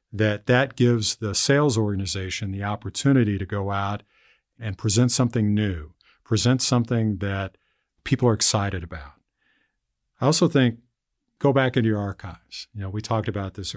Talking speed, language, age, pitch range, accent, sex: 155 wpm, English, 50-69, 100-120 Hz, American, male